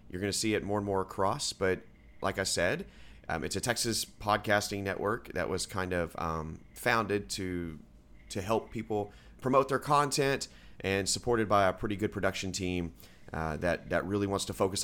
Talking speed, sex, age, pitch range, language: 190 wpm, male, 30-49, 85-115 Hz, English